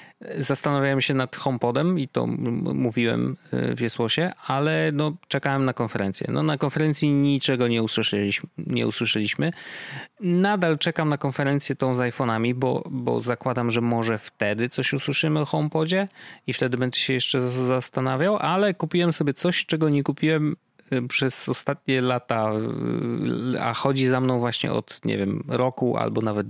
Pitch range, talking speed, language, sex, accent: 120-160 Hz, 150 wpm, Polish, male, native